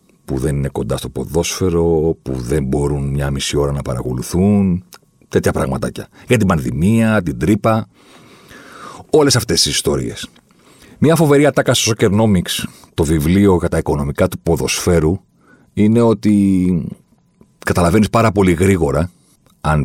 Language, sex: Greek, male